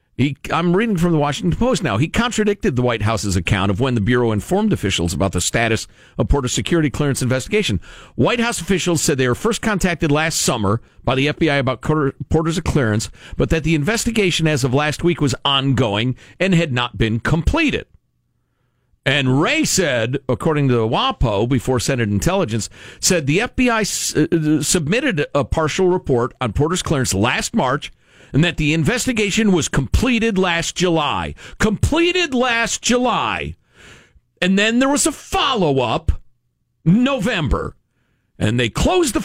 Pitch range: 125-215 Hz